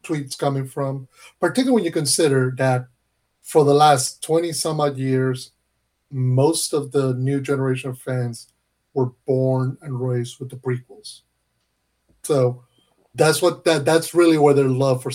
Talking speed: 150 wpm